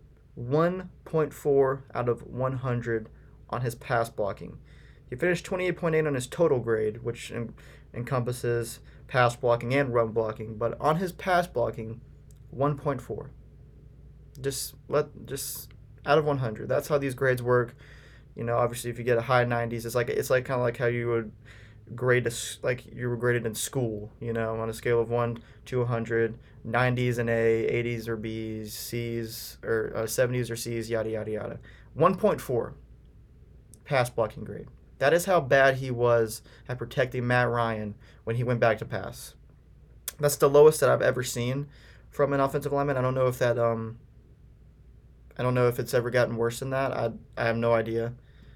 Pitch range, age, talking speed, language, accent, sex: 115-130 Hz, 20-39, 175 wpm, English, American, male